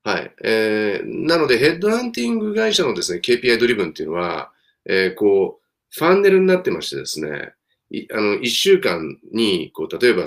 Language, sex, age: Japanese, male, 40-59